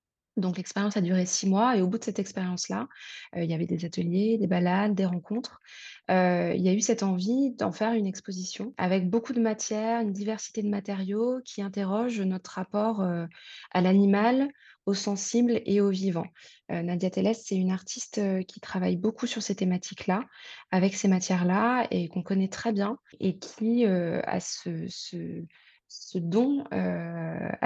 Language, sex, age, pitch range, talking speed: French, female, 20-39, 185-225 Hz, 180 wpm